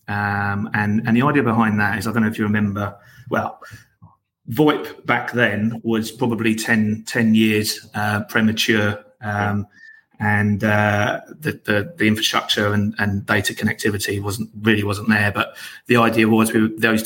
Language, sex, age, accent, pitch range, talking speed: English, male, 30-49, British, 105-115 Hz, 160 wpm